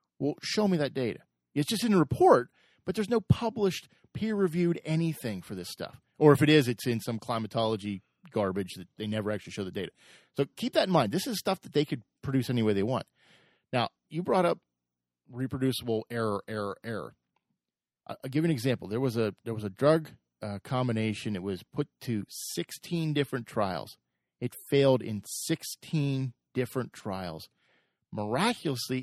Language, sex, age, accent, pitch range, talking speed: English, male, 40-59, American, 115-165 Hz, 175 wpm